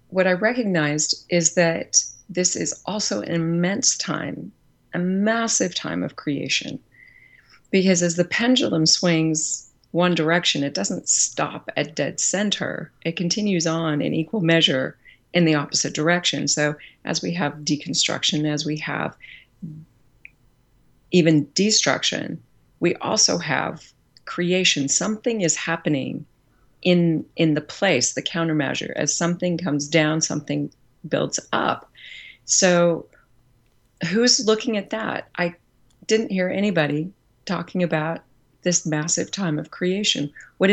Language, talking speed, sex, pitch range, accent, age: English, 125 wpm, female, 145-180 Hz, American, 40-59